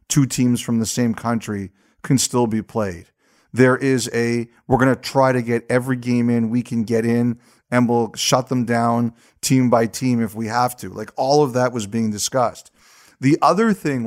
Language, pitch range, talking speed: English, 115-135 Hz, 205 wpm